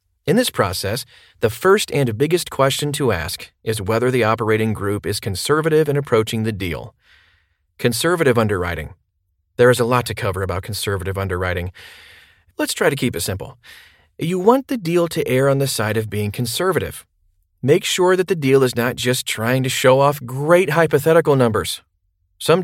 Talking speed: 175 wpm